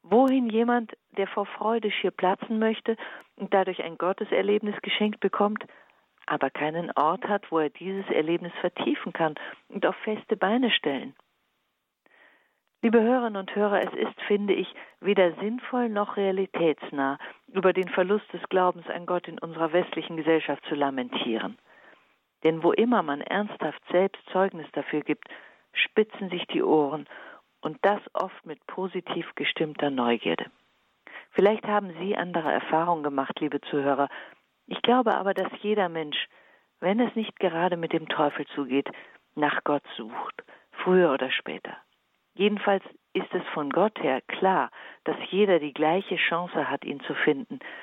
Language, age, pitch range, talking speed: German, 50-69, 160-210 Hz, 150 wpm